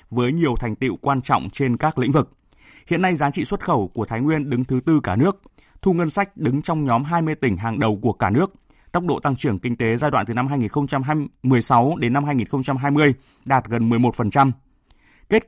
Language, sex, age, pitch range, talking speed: Vietnamese, male, 20-39, 115-155 Hz, 215 wpm